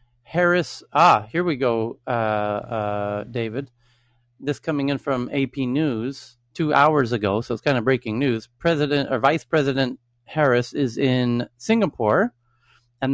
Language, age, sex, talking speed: English, 30-49, male, 145 wpm